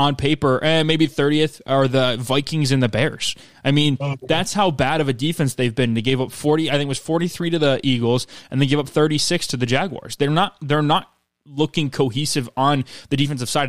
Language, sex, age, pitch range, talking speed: English, male, 20-39, 130-155 Hz, 225 wpm